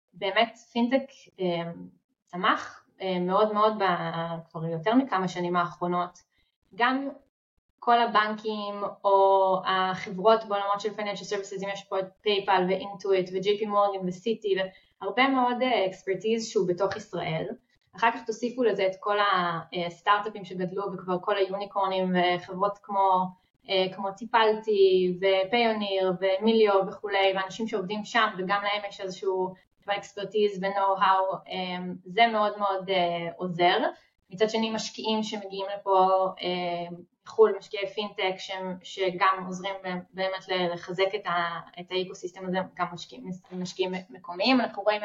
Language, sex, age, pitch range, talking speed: Hebrew, female, 20-39, 185-210 Hz, 120 wpm